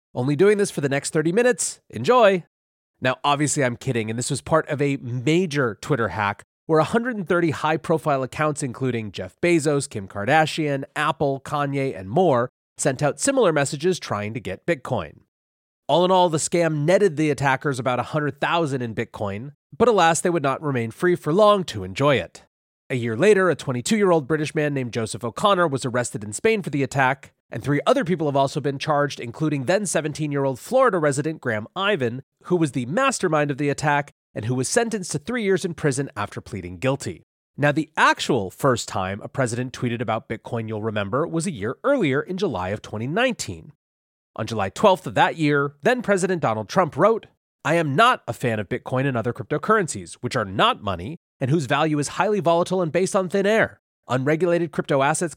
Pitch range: 125-170 Hz